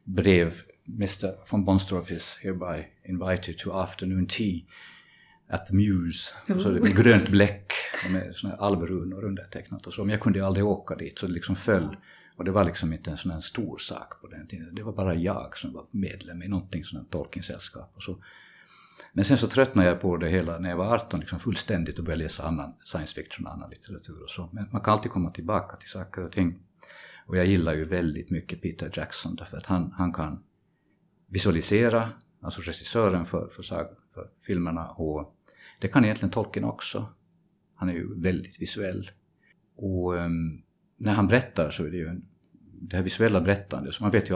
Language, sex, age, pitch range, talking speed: Swedish, male, 50-69, 85-100 Hz, 195 wpm